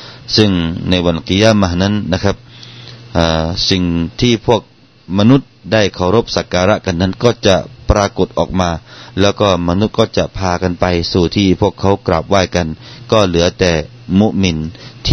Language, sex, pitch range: Thai, male, 85-115 Hz